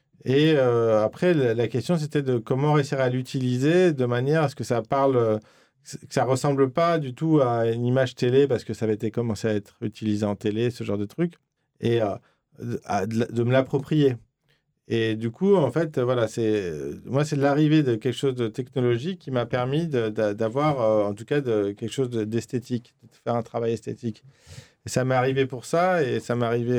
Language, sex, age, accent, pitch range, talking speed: French, male, 40-59, French, 110-135 Hz, 205 wpm